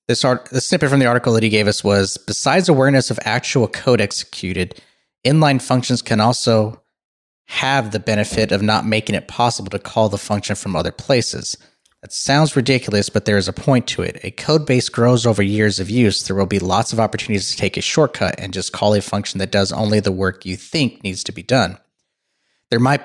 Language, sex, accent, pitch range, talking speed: English, male, American, 100-125 Hz, 215 wpm